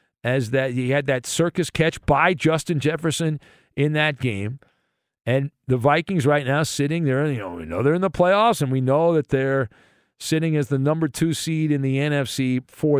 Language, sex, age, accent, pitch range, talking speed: English, male, 50-69, American, 130-165 Hz, 200 wpm